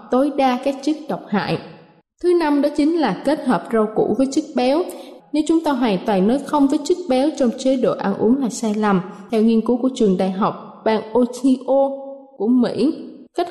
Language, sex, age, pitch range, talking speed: Vietnamese, female, 20-39, 225-275 Hz, 215 wpm